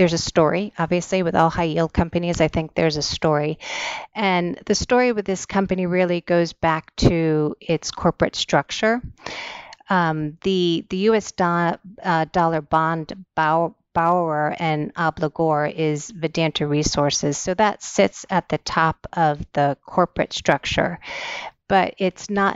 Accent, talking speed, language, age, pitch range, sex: American, 145 wpm, English, 30-49, 155-180 Hz, female